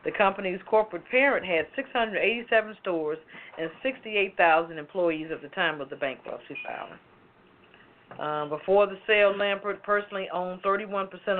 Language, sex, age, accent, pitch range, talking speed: English, female, 40-59, American, 175-225 Hz, 125 wpm